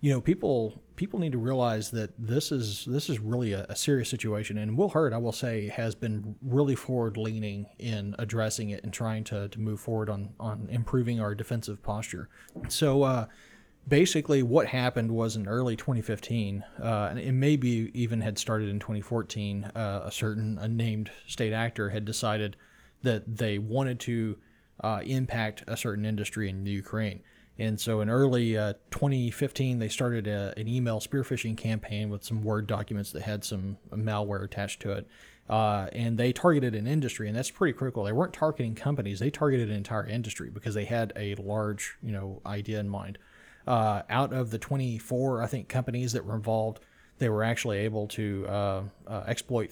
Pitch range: 105-125 Hz